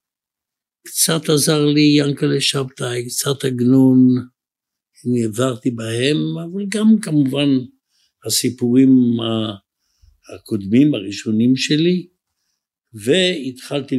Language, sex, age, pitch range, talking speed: Hebrew, male, 60-79, 110-145 Hz, 75 wpm